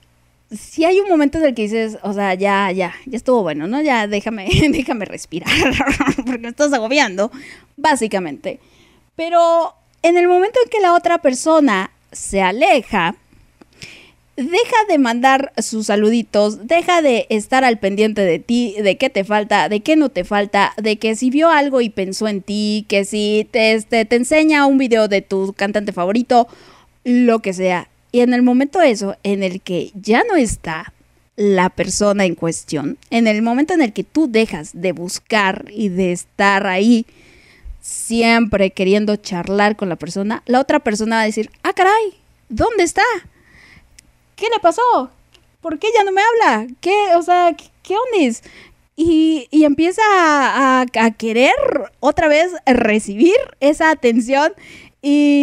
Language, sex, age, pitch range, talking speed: Spanish, female, 20-39, 205-300 Hz, 165 wpm